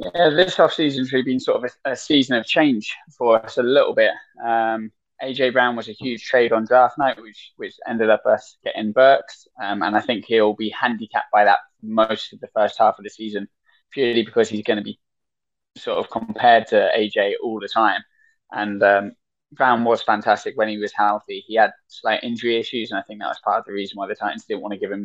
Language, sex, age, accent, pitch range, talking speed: English, male, 10-29, British, 105-145 Hz, 230 wpm